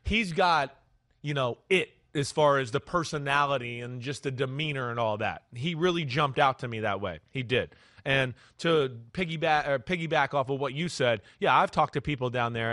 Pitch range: 140-175 Hz